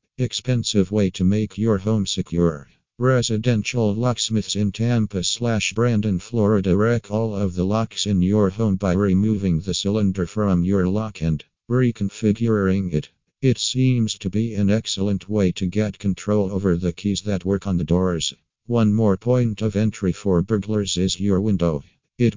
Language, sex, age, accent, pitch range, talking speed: English, male, 50-69, American, 95-110 Hz, 165 wpm